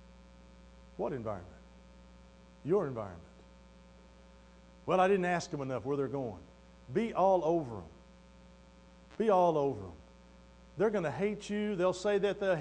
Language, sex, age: English, male, 50-69